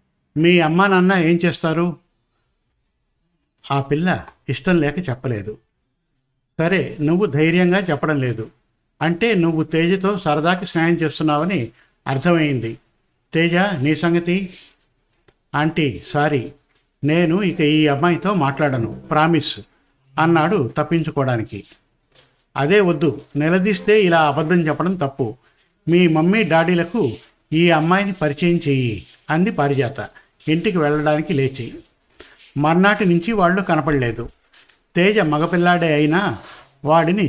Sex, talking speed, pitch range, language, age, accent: male, 100 wpm, 140-175 Hz, Telugu, 60-79, native